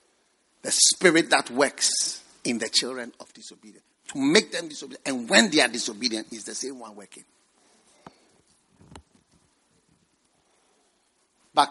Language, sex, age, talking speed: English, male, 50-69, 125 wpm